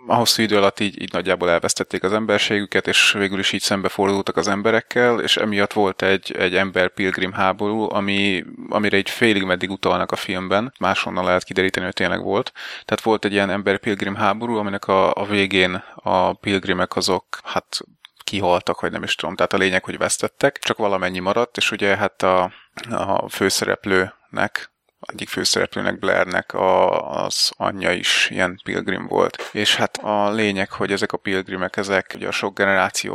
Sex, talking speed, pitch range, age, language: male, 170 wpm, 95-105 Hz, 30-49, Hungarian